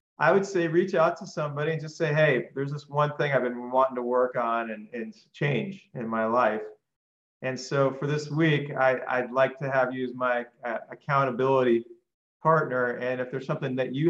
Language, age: English, 40-59